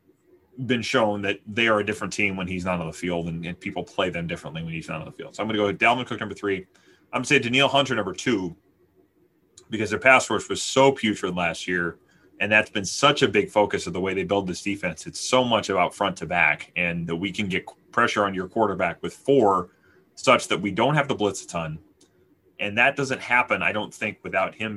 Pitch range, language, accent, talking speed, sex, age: 95-120 Hz, English, American, 250 wpm, male, 30-49